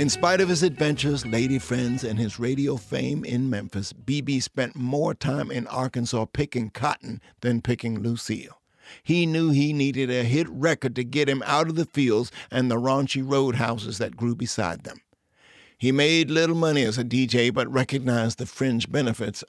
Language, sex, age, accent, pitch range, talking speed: English, male, 60-79, American, 115-135 Hz, 180 wpm